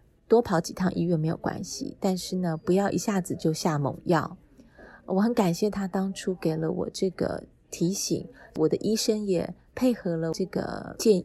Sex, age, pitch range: female, 20-39, 165-200 Hz